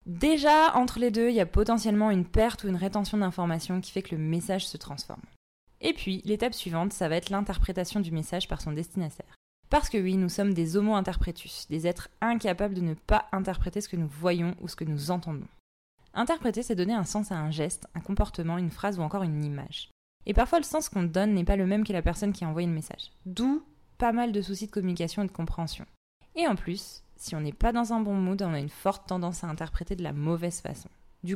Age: 20-39